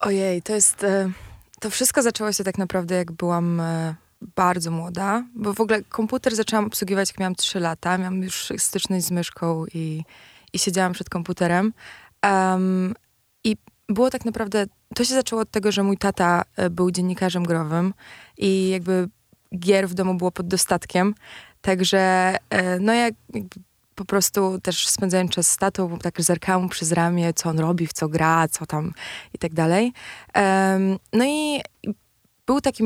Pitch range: 180-215 Hz